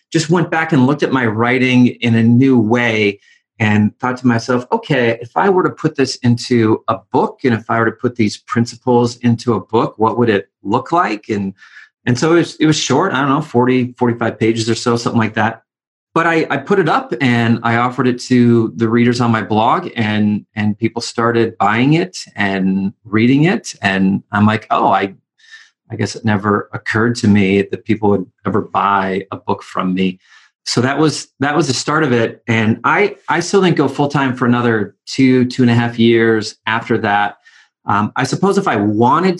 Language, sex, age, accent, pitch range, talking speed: English, male, 30-49, American, 110-135 Hz, 210 wpm